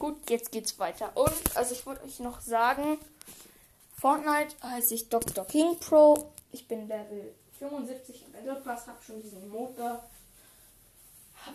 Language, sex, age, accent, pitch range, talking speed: German, female, 10-29, German, 230-285 Hz, 150 wpm